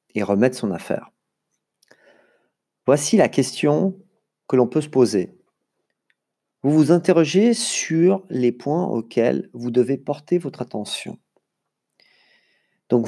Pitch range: 115-160 Hz